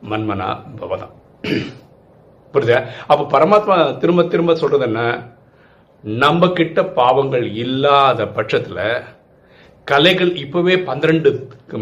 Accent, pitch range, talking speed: native, 130-180 Hz, 75 wpm